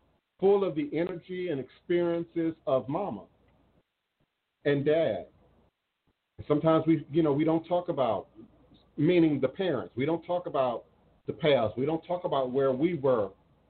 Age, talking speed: 50-69, 150 wpm